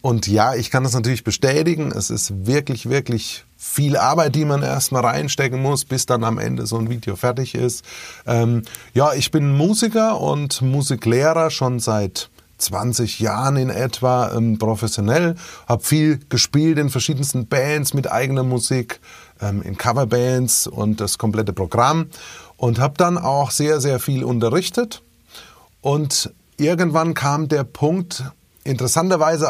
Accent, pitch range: German, 115-145 Hz